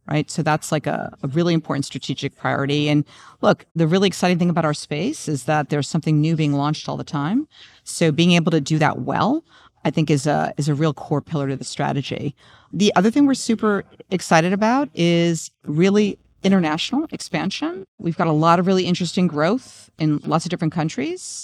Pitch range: 145-170 Hz